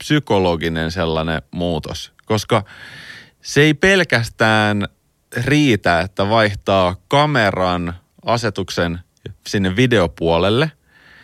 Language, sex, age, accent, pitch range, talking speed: Finnish, male, 30-49, native, 90-115 Hz, 75 wpm